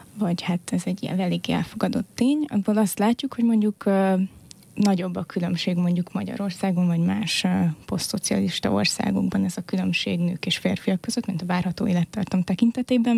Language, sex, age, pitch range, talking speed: Hungarian, female, 20-39, 180-205 Hz, 165 wpm